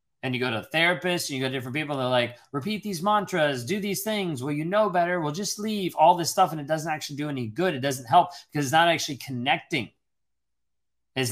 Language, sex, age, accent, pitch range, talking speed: English, male, 30-49, American, 125-155 Hz, 240 wpm